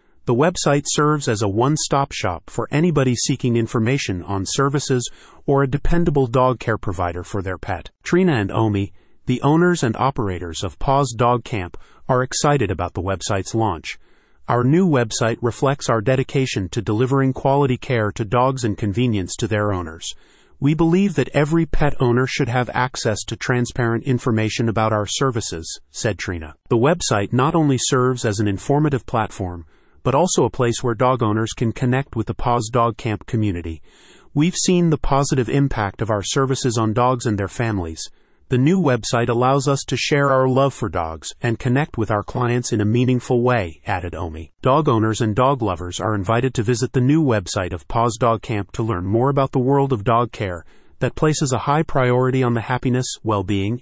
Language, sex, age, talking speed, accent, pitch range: English, male, 30-49, 185 wpm, American, 105-135 Hz